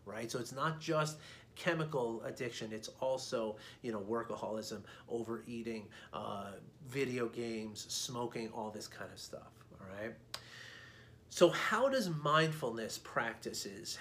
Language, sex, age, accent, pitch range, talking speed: English, male, 30-49, American, 110-145 Hz, 125 wpm